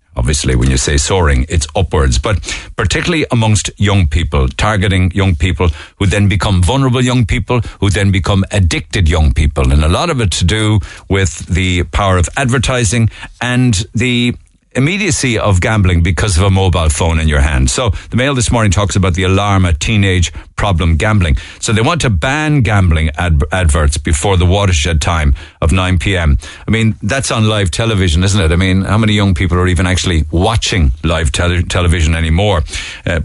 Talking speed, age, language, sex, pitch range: 185 wpm, 60-79, English, male, 85-105 Hz